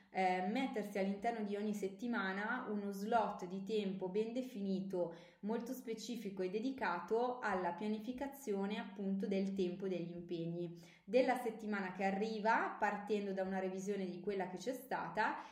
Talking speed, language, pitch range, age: 140 wpm, Italian, 185-220 Hz, 20-39